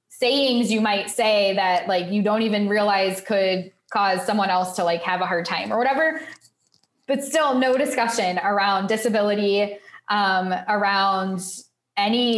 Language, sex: English, female